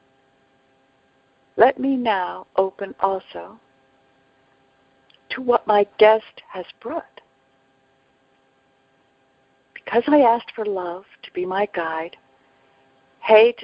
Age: 60-79